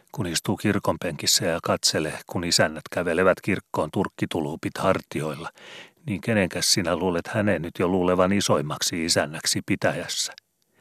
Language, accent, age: Finnish, native, 40-59